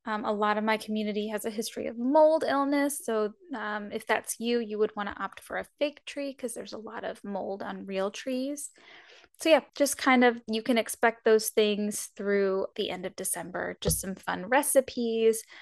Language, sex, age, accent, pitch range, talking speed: English, female, 10-29, American, 195-245 Hz, 205 wpm